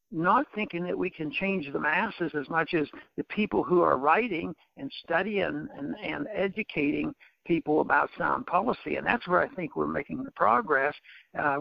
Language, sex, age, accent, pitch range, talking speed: English, male, 60-79, American, 155-220 Hz, 185 wpm